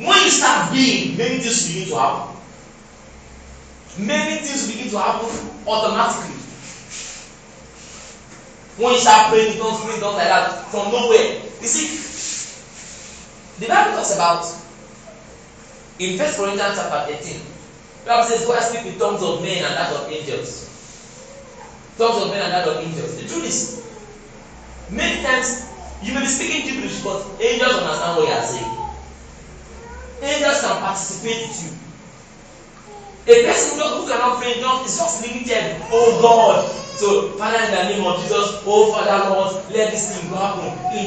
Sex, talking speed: male, 155 wpm